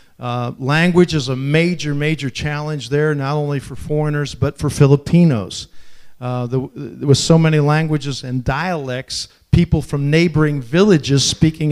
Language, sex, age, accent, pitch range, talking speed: English, male, 50-69, American, 135-155 Hz, 150 wpm